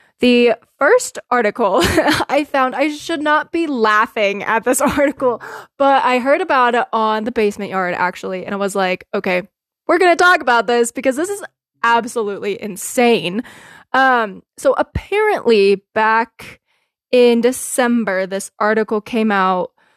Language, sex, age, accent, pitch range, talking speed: English, female, 20-39, American, 215-265 Hz, 145 wpm